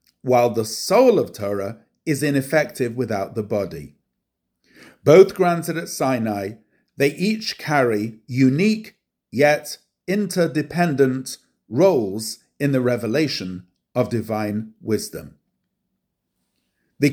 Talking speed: 100 wpm